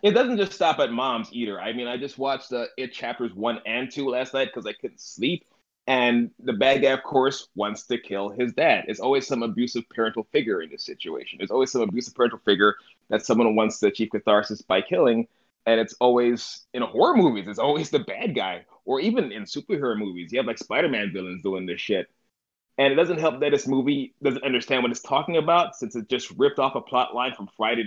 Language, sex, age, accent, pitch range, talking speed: English, male, 30-49, American, 110-140 Hz, 225 wpm